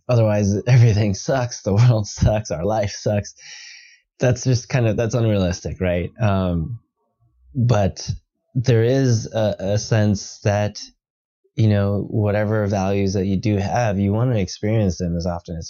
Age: 20-39